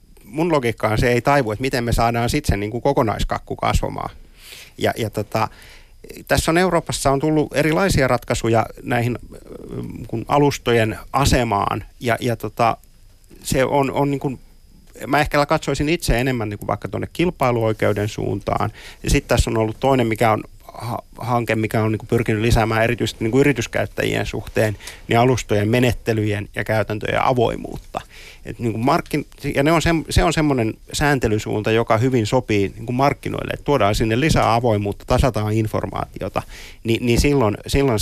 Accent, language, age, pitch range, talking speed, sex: native, Finnish, 30-49, 105-135 Hz, 155 wpm, male